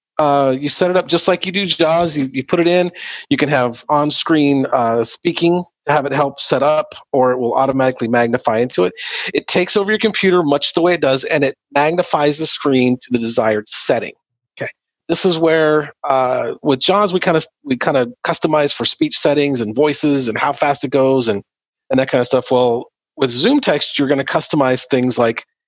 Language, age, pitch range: English, 40-59, 115-150 Hz